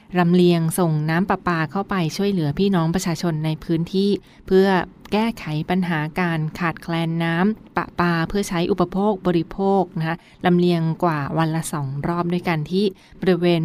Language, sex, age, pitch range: Thai, female, 20-39, 160-185 Hz